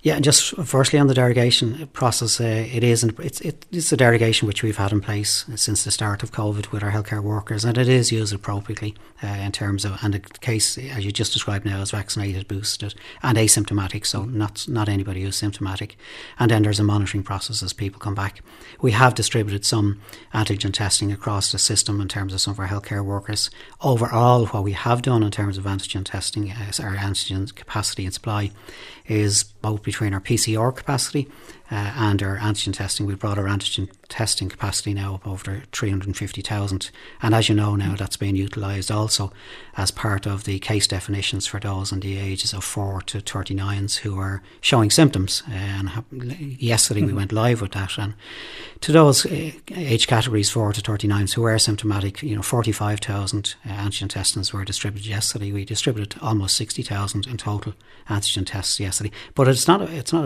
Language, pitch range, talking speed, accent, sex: English, 100-115 Hz, 200 wpm, Irish, male